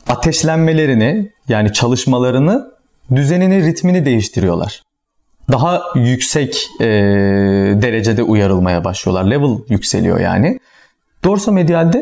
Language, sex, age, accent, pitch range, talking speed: Turkish, male, 40-59, native, 110-165 Hz, 80 wpm